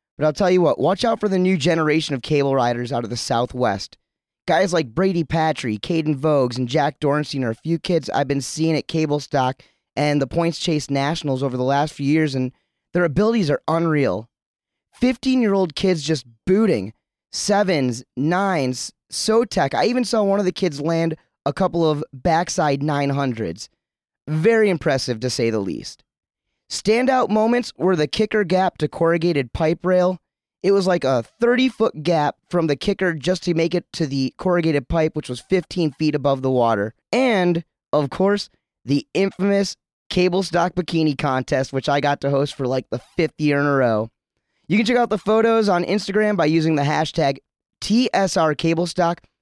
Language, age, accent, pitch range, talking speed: English, 30-49, American, 140-185 Hz, 180 wpm